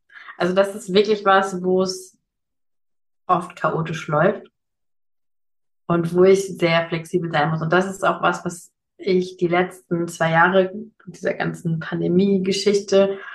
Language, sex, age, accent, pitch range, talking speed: German, female, 20-39, German, 175-195 Hz, 140 wpm